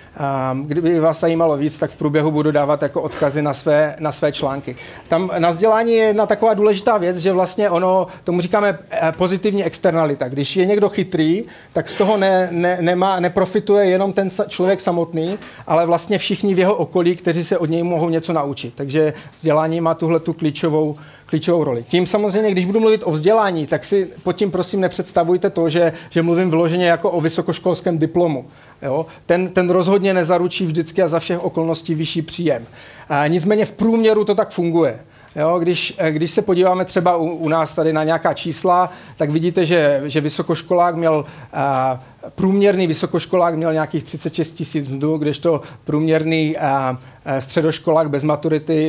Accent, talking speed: native, 170 wpm